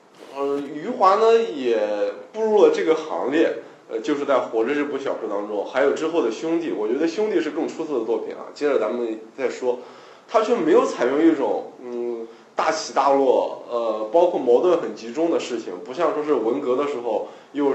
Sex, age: male, 20-39